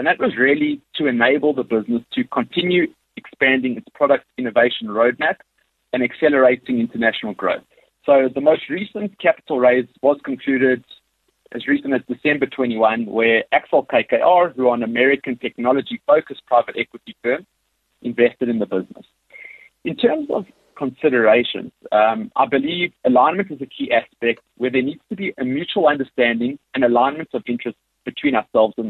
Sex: male